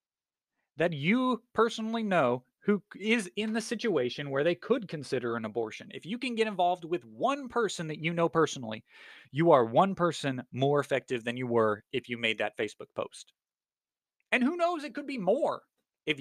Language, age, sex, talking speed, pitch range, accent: English, 30-49, male, 185 wpm, 125-185 Hz, American